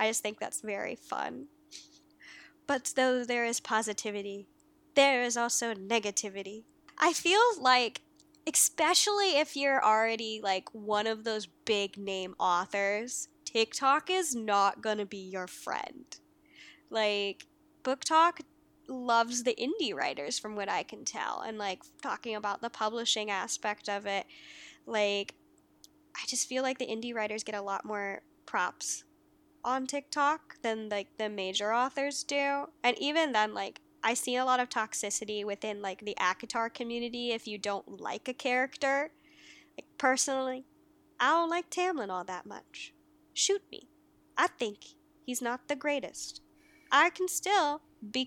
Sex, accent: female, American